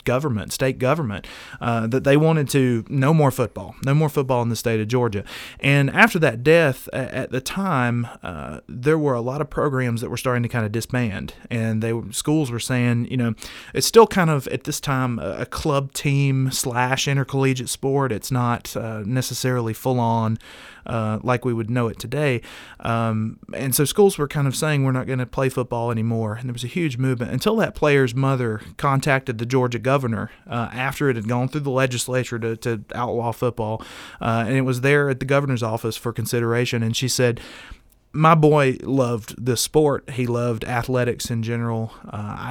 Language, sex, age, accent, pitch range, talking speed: English, male, 30-49, American, 115-135 Hz, 200 wpm